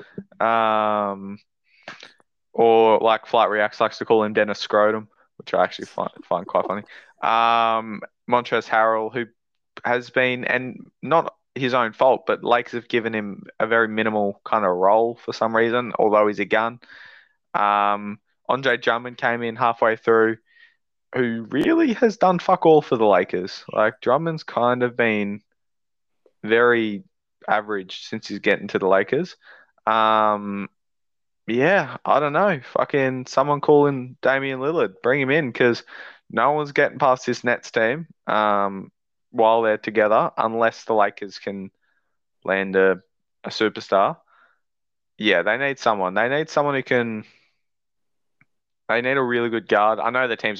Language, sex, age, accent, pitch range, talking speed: English, male, 20-39, Australian, 105-125 Hz, 155 wpm